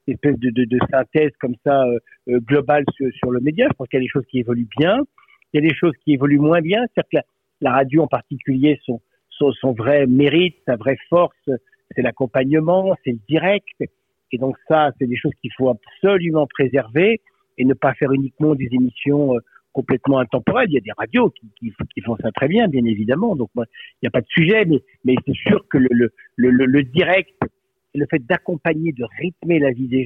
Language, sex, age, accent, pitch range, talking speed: French, male, 50-69, French, 125-155 Hz, 220 wpm